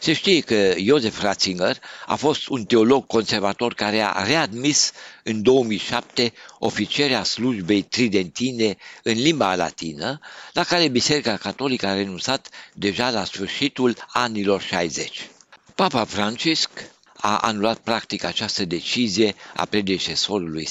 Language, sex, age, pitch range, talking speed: Romanian, male, 60-79, 95-125 Hz, 120 wpm